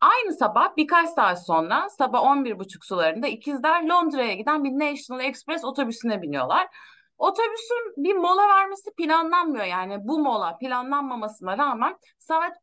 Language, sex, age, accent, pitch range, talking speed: Turkish, female, 30-49, native, 235-330 Hz, 130 wpm